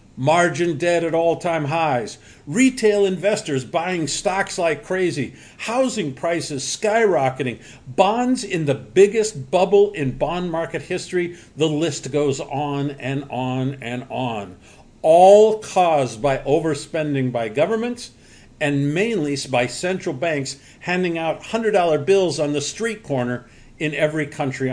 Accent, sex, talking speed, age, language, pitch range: American, male, 130 wpm, 50-69, English, 135-180 Hz